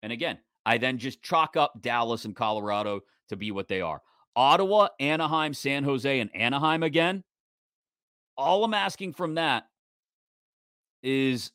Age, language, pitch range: 30-49, English, 115-160 Hz